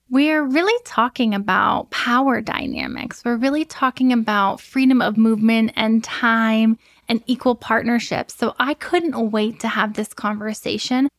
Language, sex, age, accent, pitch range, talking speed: English, female, 10-29, American, 225-265 Hz, 140 wpm